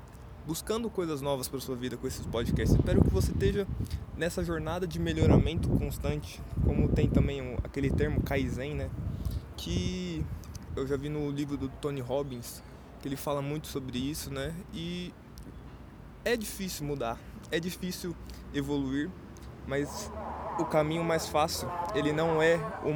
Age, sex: 20-39, male